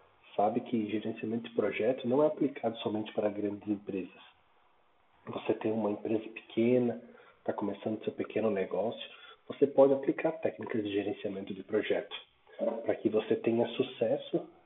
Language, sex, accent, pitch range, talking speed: Portuguese, male, Brazilian, 105-125 Hz, 145 wpm